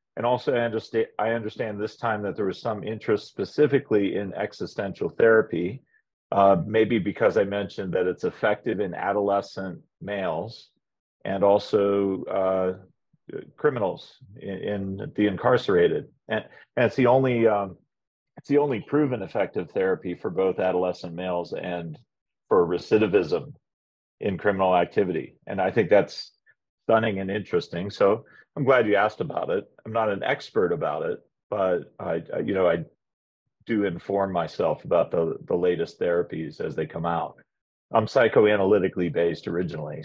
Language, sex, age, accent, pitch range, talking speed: English, male, 40-59, American, 90-110 Hz, 145 wpm